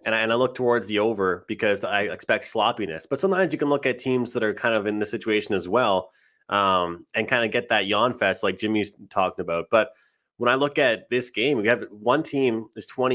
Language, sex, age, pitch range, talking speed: English, male, 20-39, 100-125 Hz, 235 wpm